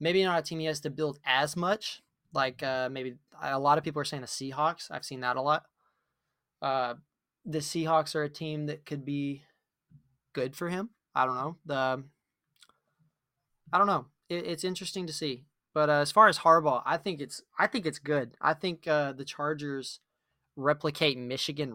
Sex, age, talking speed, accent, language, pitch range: male, 20-39, 195 wpm, American, English, 135-155 Hz